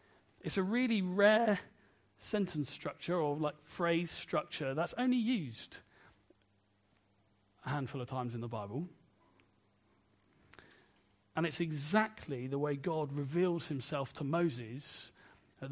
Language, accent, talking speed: English, British, 120 wpm